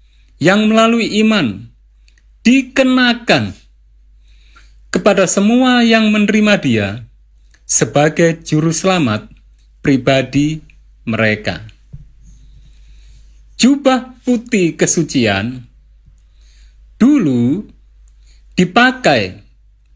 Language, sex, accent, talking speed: Indonesian, male, native, 55 wpm